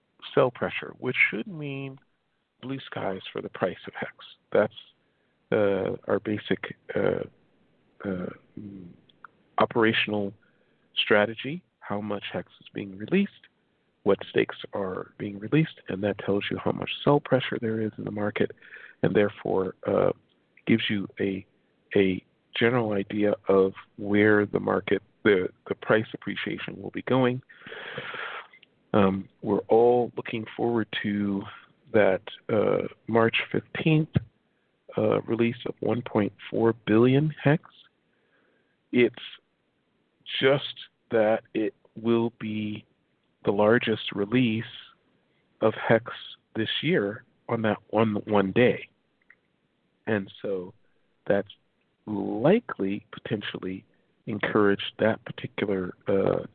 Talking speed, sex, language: 110 wpm, male, English